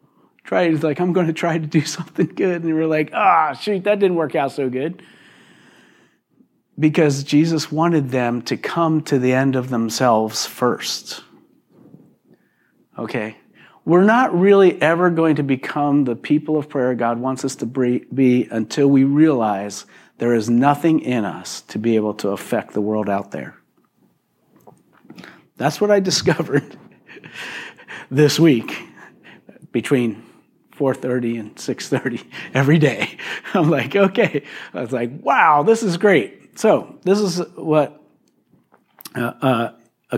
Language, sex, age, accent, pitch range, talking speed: English, male, 40-59, American, 125-165 Hz, 145 wpm